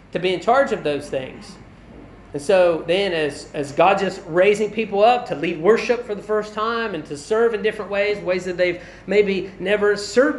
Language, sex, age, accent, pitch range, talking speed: English, male, 30-49, American, 170-225 Hz, 210 wpm